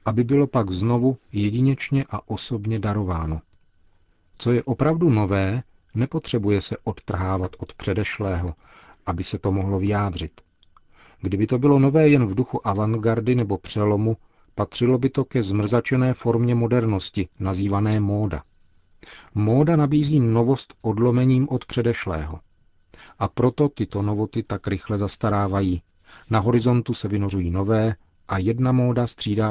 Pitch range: 95-120 Hz